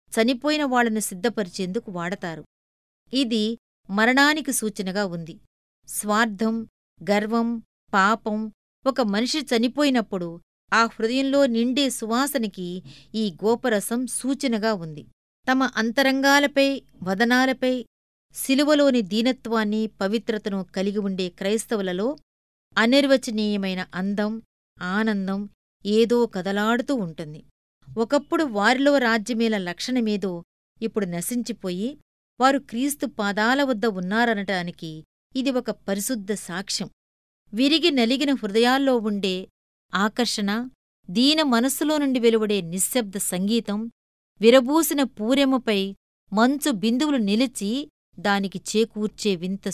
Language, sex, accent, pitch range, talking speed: Telugu, female, native, 200-255 Hz, 85 wpm